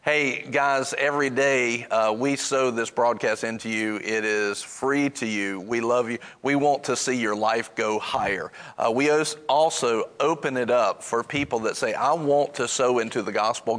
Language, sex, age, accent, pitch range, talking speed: English, male, 40-59, American, 120-145 Hz, 190 wpm